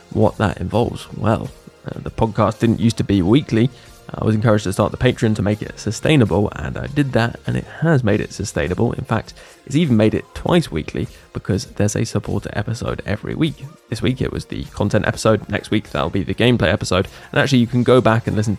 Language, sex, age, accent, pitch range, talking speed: English, male, 20-39, British, 105-130 Hz, 225 wpm